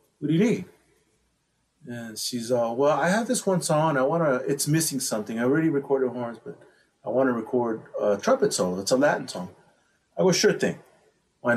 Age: 30-49